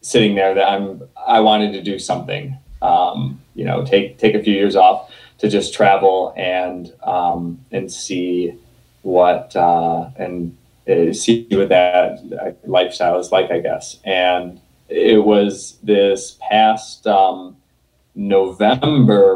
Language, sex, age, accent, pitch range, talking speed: English, male, 20-39, American, 90-105 Hz, 135 wpm